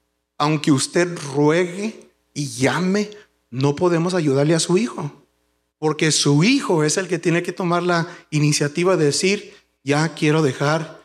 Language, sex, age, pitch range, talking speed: English, male, 40-59, 145-195 Hz, 145 wpm